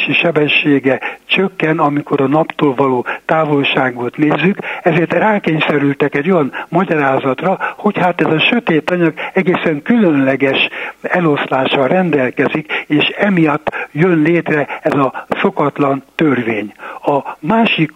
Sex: male